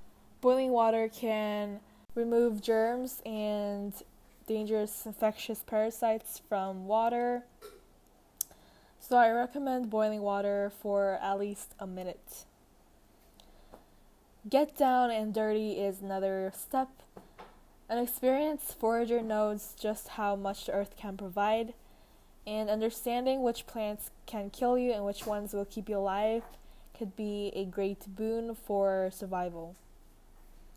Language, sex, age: Korean, female, 10-29